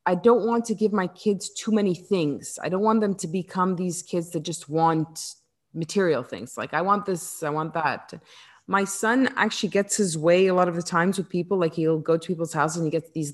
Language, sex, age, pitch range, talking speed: English, female, 30-49, 165-230 Hz, 240 wpm